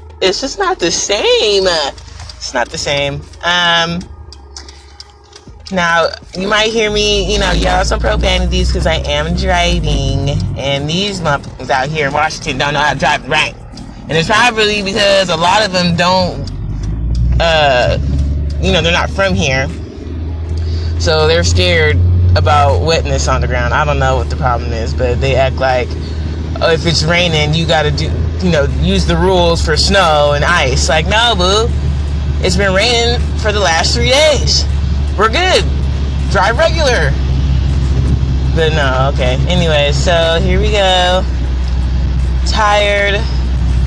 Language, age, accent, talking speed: English, 20-39, American, 150 wpm